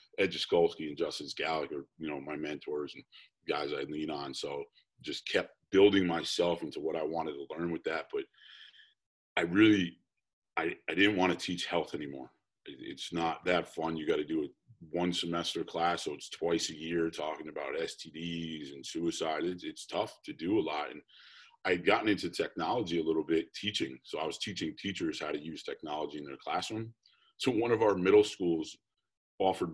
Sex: male